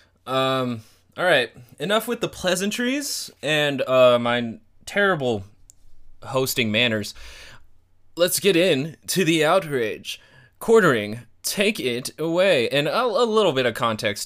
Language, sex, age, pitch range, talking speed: English, male, 20-39, 105-130 Hz, 125 wpm